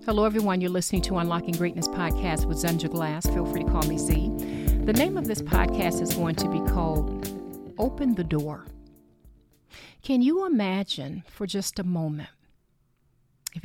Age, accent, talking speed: 40-59, American, 165 wpm